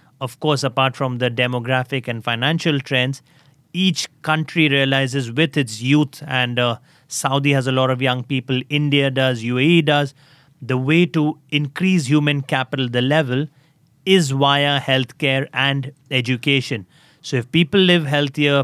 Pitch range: 130-150 Hz